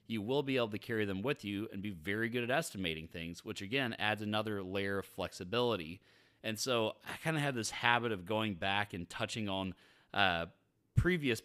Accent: American